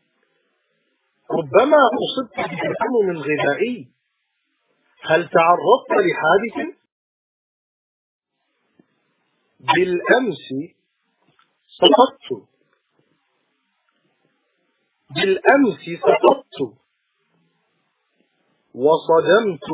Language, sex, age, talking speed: English, male, 40-59, 35 wpm